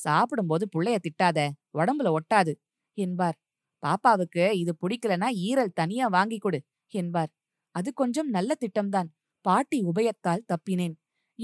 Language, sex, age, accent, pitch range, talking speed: Tamil, female, 20-39, native, 180-245 Hz, 105 wpm